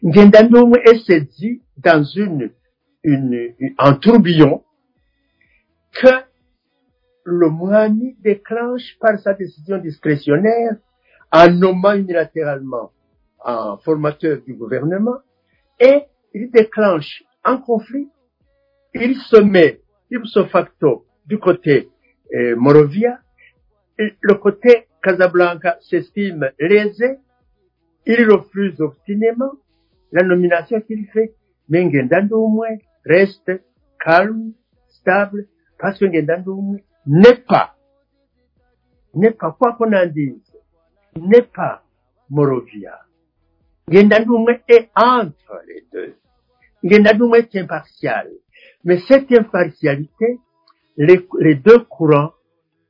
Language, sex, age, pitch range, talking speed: French, male, 60-79, 165-235 Hz, 90 wpm